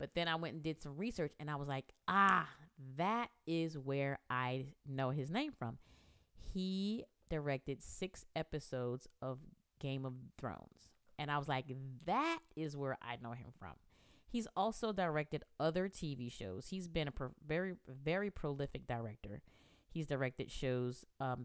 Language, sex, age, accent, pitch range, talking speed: English, female, 30-49, American, 120-155 Hz, 160 wpm